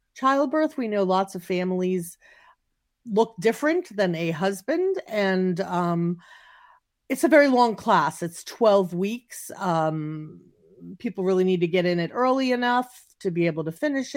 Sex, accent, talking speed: female, American, 155 wpm